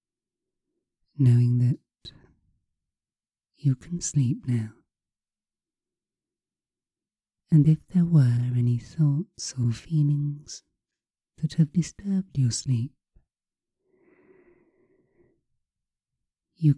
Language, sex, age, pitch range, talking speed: English, female, 30-49, 120-165 Hz, 70 wpm